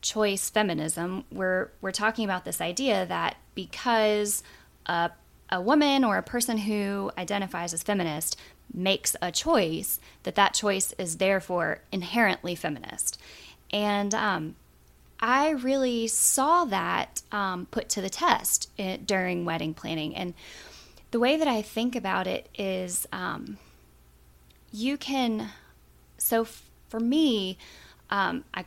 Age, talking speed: 20-39, 130 wpm